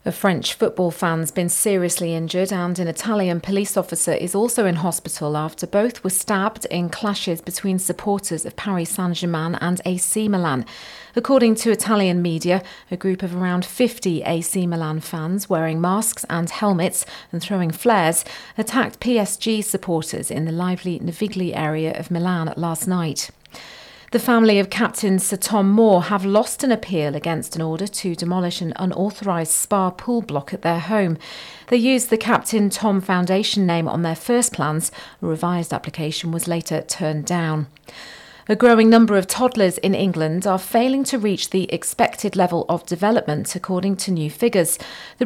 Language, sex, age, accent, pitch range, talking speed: English, female, 40-59, British, 165-210 Hz, 165 wpm